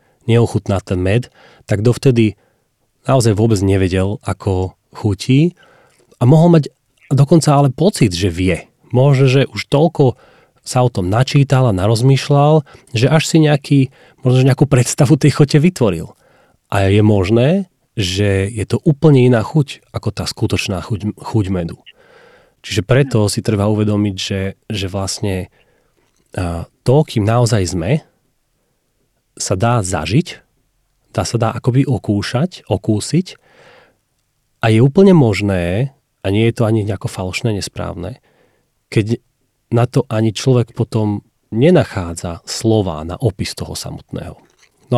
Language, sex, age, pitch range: Slovak, male, 30-49, 100-135 Hz